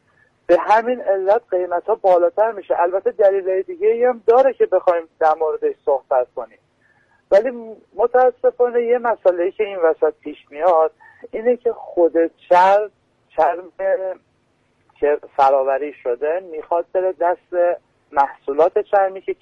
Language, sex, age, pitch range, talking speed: Persian, male, 50-69, 165-230 Hz, 125 wpm